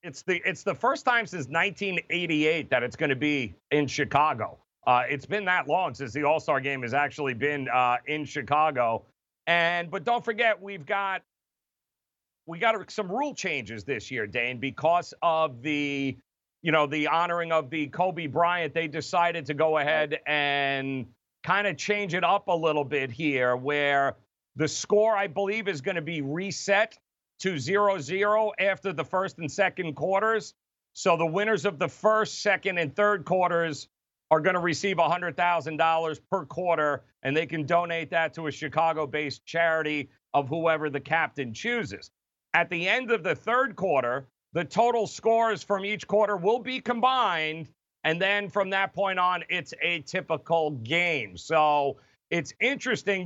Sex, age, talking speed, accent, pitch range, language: male, 40-59, 170 wpm, American, 145-195 Hz, English